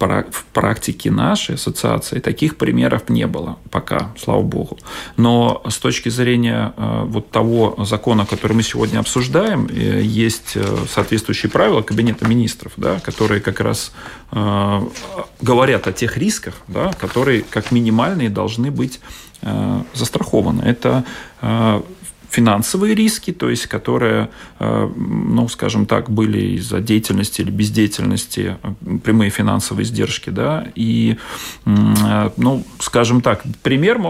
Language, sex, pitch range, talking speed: Russian, male, 105-120 Hz, 110 wpm